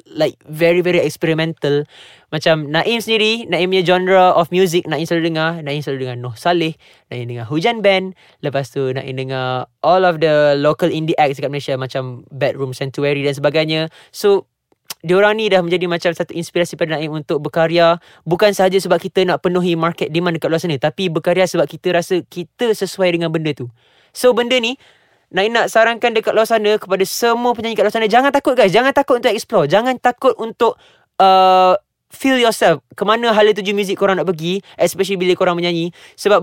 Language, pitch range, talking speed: Malay, 155-210 Hz, 185 wpm